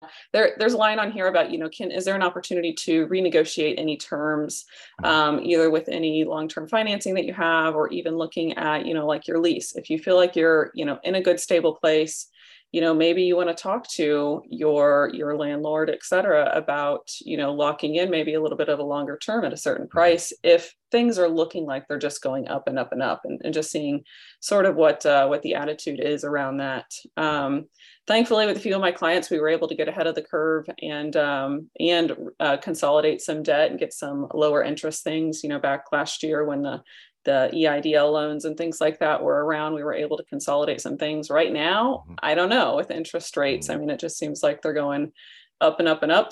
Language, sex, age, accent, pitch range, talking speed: English, female, 30-49, American, 150-175 Hz, 230 wpm